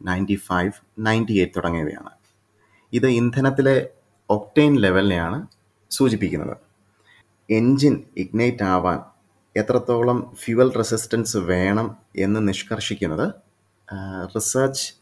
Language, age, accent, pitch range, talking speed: Malayalam, 30-49, native, 95-120 Hz, 80 wpm